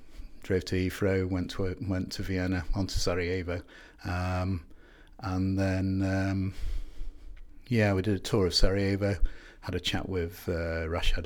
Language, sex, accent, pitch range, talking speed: English, male, British, 85-100 Hz, 150 wpm